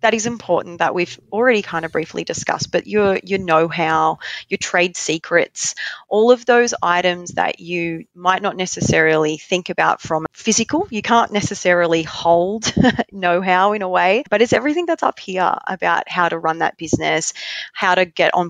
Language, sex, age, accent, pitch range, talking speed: English, female, 20-39, Australian, 160-195 Hz, 175 wpm